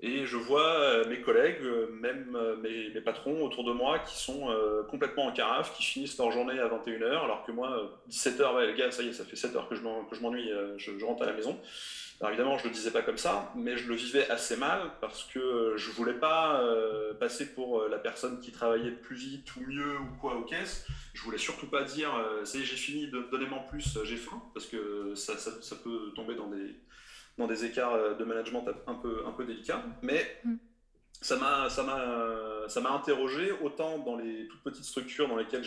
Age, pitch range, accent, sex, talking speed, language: 30-49, 115-145 Hz, French, male, 230 wpm, French